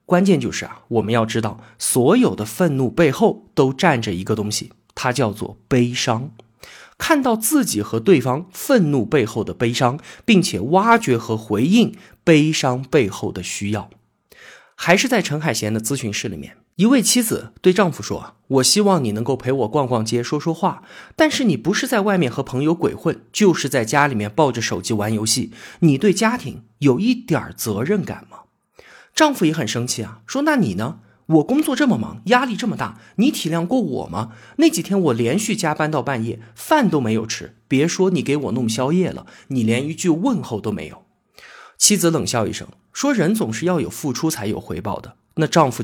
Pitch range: 115-190 Hz